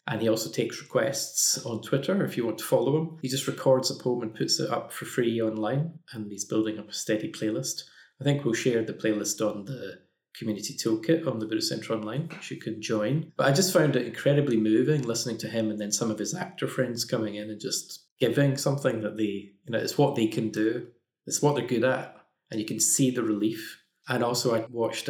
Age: 20-39